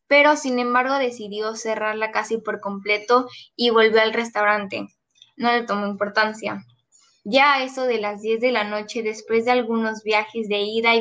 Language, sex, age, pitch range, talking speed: Spanish, female, 10-29, 215-255 Hz, 175 wpm